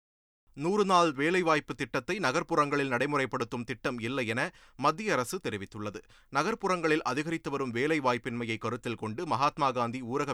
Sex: male